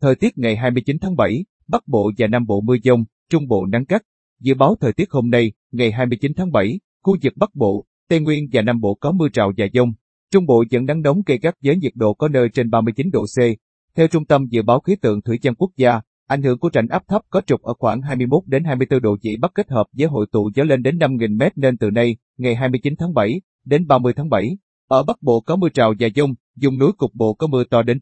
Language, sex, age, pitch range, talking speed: Vietnamese, male, 20-39, 115-150 Hz, 255 wpm